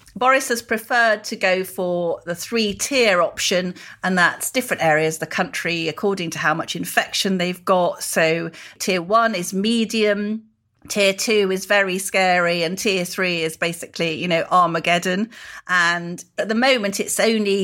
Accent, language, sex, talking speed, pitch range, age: British, English, female, 165 wpm, 170-205 Hz, 40-59